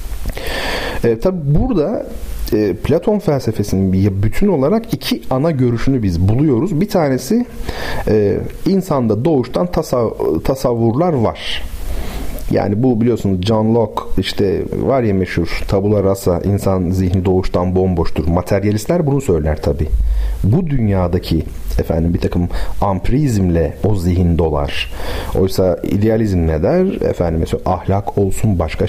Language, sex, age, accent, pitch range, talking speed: Turkish, male, 40-59, native, 85-125 Hz, 110 wpm